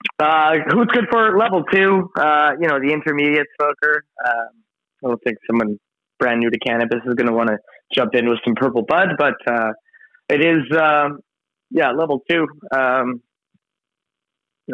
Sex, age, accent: male, 20-39, American